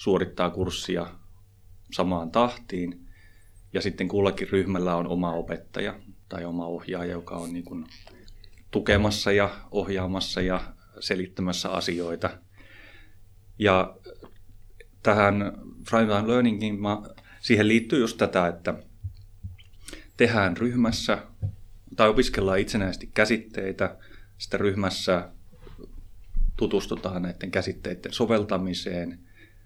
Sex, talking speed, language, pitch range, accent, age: male, 90 wpm, Finnish, 90-100 Hz, native, 30-49